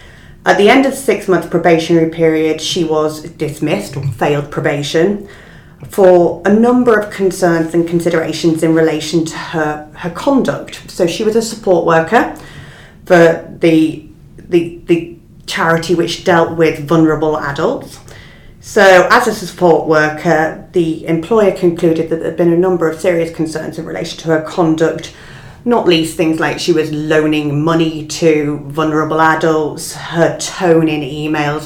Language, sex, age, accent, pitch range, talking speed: English, female, 30-49, British, 160-180 Hz, 150 wpm